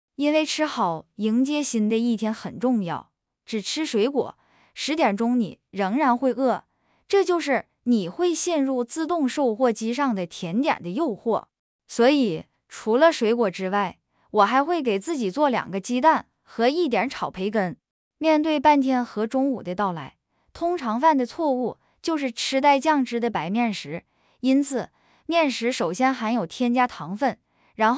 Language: English